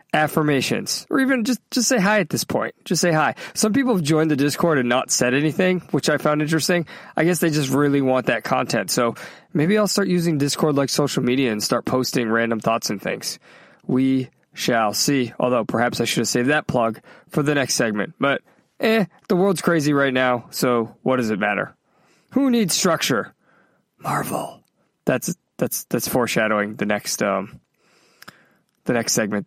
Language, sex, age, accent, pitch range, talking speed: English, male, 20-39, American, 135-185 Hz, 185 wpm